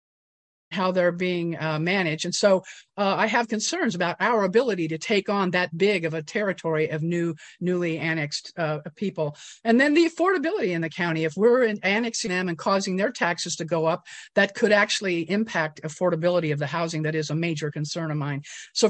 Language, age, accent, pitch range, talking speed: English, 50-69, American, 160-200 Hz, 200 wpm